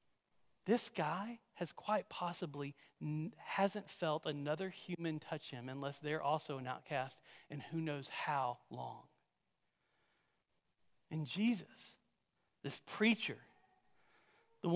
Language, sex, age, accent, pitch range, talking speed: English, male, 40-59, American, 160-225 Hz, 105 wpm